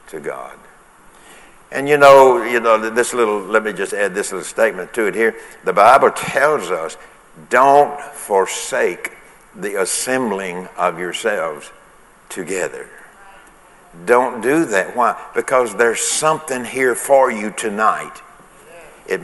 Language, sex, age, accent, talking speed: English, male, 60-79, American, 130 wpm